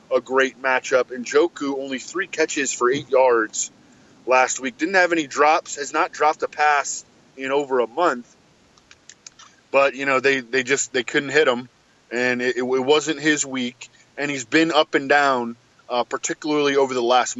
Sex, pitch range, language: male, 125-155 Hz, English